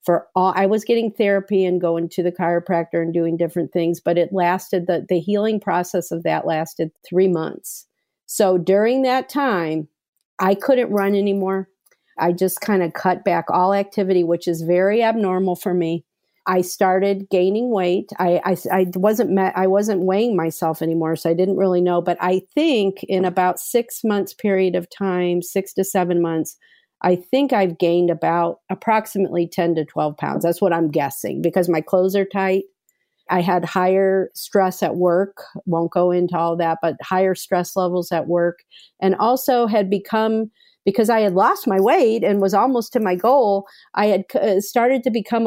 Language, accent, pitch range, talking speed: English, American, 175-205 Hz, 185 wpm